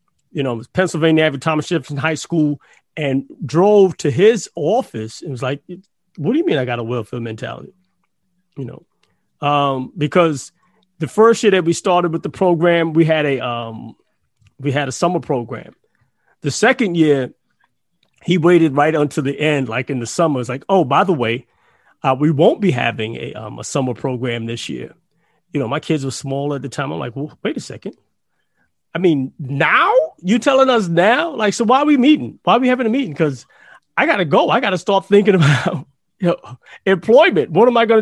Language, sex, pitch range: English, male, 135-190 Hz